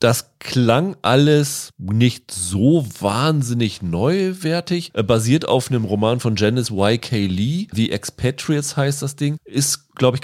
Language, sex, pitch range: German, male, 110-140 Hz